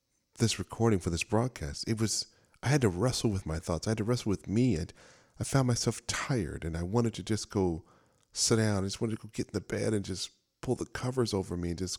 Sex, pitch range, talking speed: male, 90-115 Hz, 255 wpm